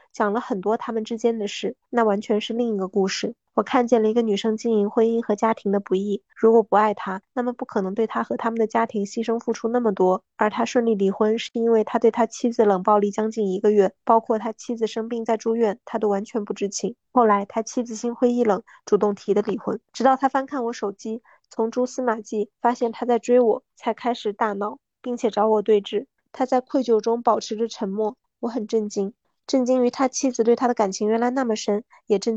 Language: Chinese